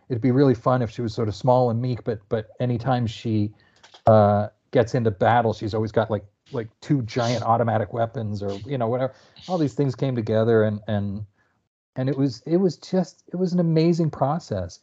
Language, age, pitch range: English, 40-59, 105-130 Hz